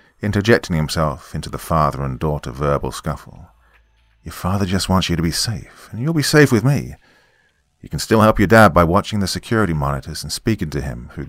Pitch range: 80-110 Hz